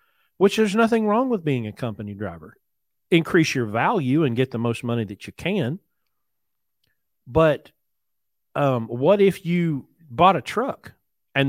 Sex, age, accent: male, 40-59, American